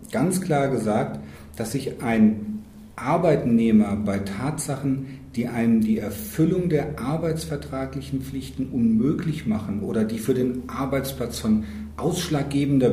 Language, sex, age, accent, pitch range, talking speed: German, male, 40-59, German, 110-145 Hz, 115 wpm